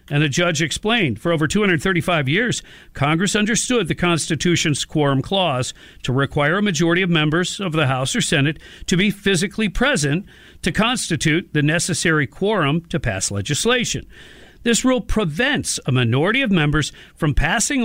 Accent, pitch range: American, 145-190 Hz